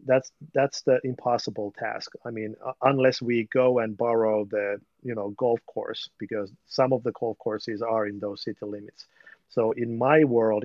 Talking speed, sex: 180 wpm, male